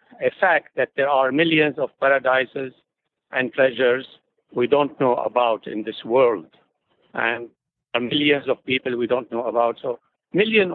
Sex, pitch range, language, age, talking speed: male, 125-165 Hz, English, 60-79, 155 wpm